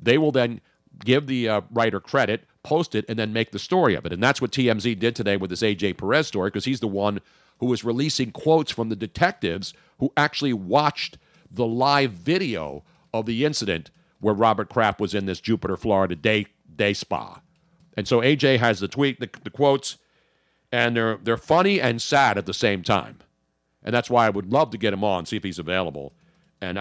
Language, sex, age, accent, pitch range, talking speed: English, male, 50-69, American, 100-145 Hz, 210 wpm